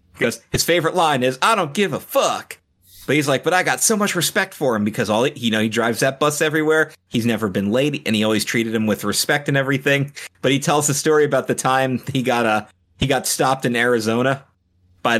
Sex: male